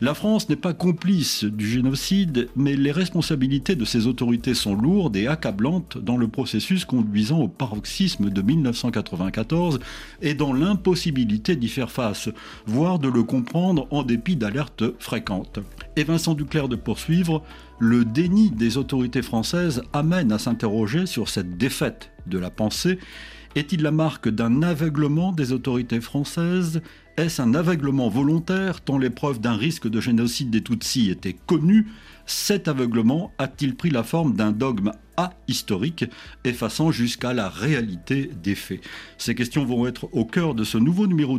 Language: French